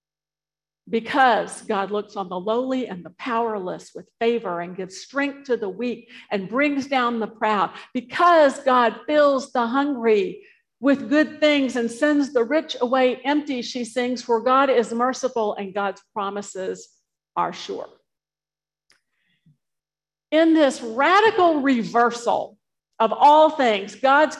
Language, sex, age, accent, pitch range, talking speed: English, female, 50-69, American, 220-280 Hz, 135 wpm